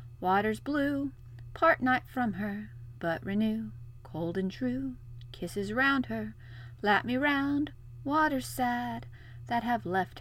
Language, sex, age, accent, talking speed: English, female, 30-49, American, 130 wpm